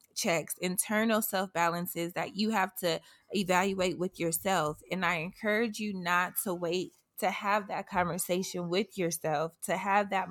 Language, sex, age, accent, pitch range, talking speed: English, female, 20-39, American, 175-195 Hz, 155 wpm